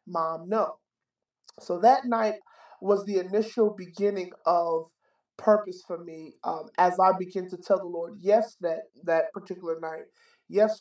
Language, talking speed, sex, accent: English, 150 wpm, male, American